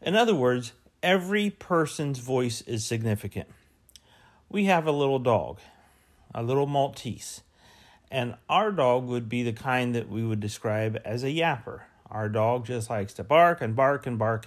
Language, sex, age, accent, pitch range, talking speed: English, male, 40-59, American, 110-155 Hz, 165 wpm